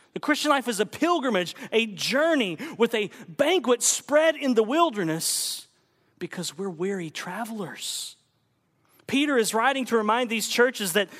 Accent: American